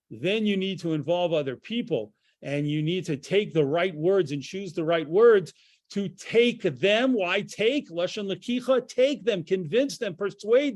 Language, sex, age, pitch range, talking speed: English, male, 40-59, 165-215 Hz, 175 wpm